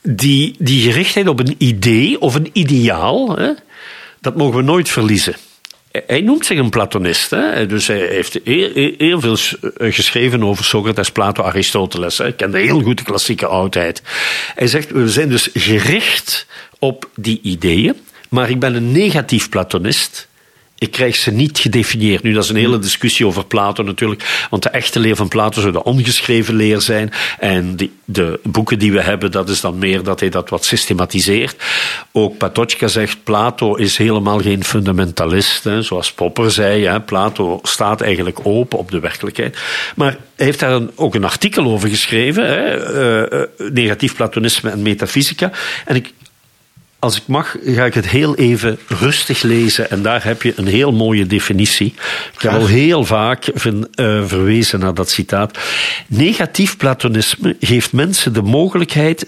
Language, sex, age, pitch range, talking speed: Dutch, male, 50-69, 105-130 Hz, 165 wpm